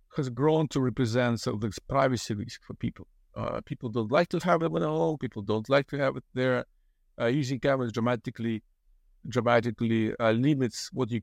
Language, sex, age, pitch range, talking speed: English, male, 50-69, 110-145 Hz, 190 wpm